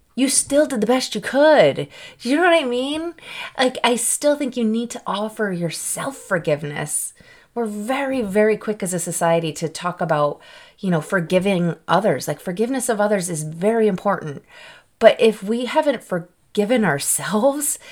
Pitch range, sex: 170-245 Hz, female